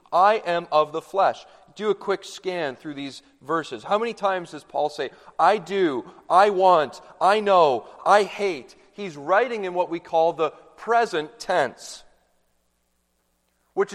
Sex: male